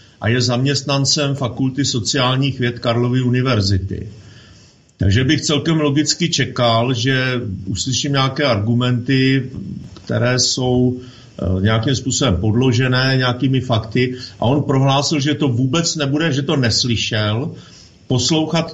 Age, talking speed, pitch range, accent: 50-69, 110 wpm, 115-140 Hz, native